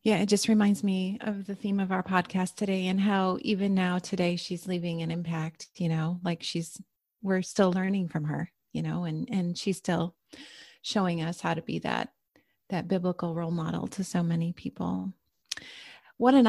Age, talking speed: 30-49, 190 wpm